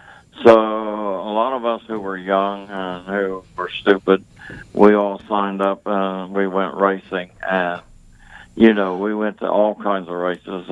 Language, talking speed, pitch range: English, 175 wpm, 90-105 Hz